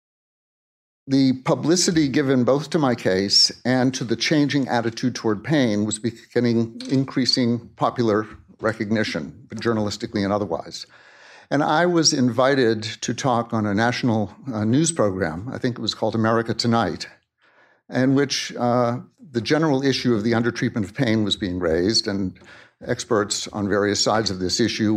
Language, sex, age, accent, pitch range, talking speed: English, male, 60-79, American, 105-135 Hz, 155 wpm